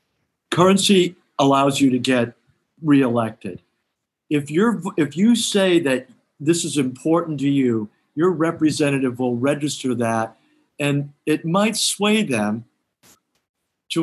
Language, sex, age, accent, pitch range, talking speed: English, male, 50-69, American, 125-155 Hz, 120 wpm